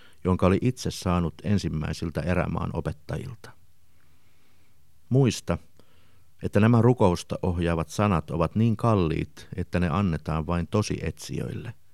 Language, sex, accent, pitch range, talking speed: Finnish, male, native, 80-105 Hz, 110 wpm